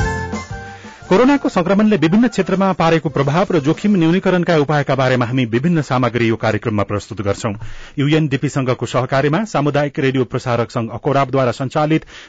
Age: 30-49